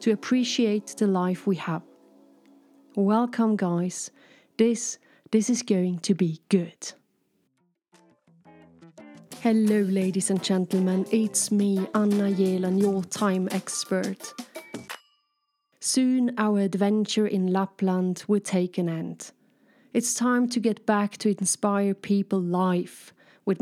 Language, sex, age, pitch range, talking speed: English, female, 30-49, 190-230 Hz, 115 wpm